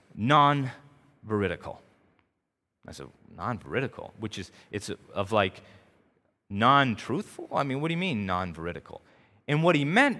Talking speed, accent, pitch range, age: 125 wpm, American, 110-165 Hz, 30-49